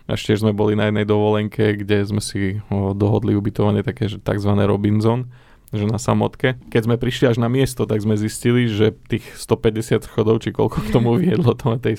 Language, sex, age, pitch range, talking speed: Slovak, male, 20-39, 105-120 Hz, 190 wpm